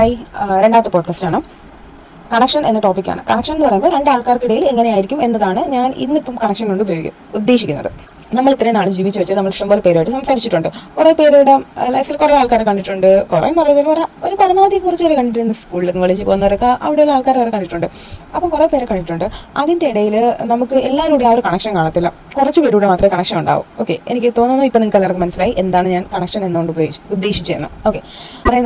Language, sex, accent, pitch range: Malayalam, female, native, 190-270 Hz